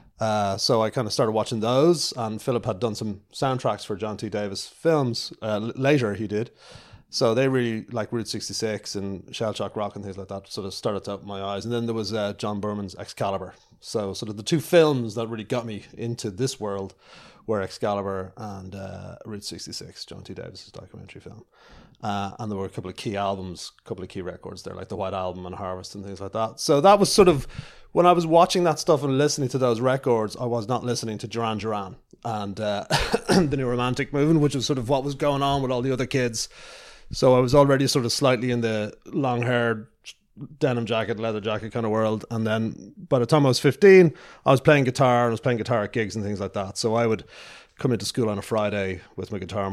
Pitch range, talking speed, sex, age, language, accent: 100-125 Hz, 240 wpm, male, 30-49, English, Irish